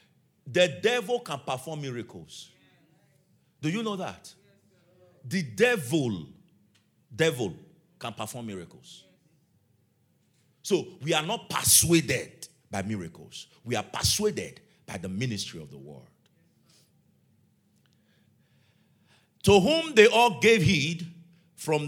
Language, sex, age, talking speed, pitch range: English, male, 50-69, 105 wpm, 110-170 Hz